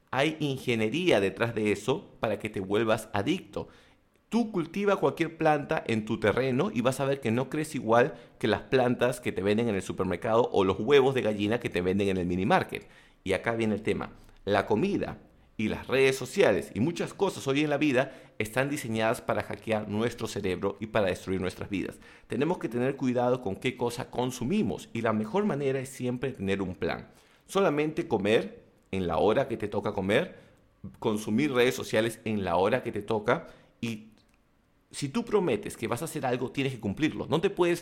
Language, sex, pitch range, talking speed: English, male, 110-155 Hz, 195 wpm